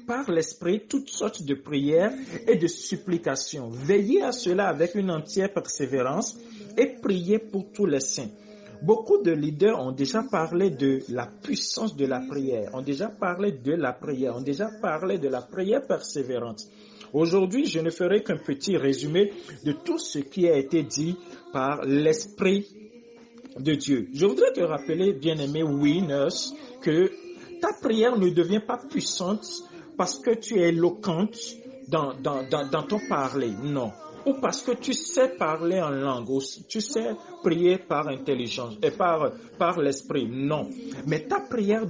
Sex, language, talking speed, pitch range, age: male, French, 160 wpm, 155-235 Hz, 50-69